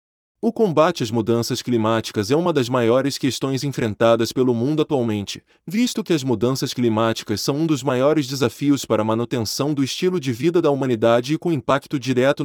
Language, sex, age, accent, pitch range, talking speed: Portuguese, male, 20-39, Brazilian, 115-155 Hz, 180 wpm